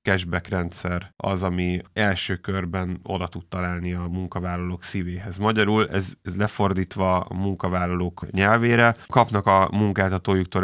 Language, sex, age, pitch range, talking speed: Hungarian, male, 30-49, 90-100 Hz, 125 wpm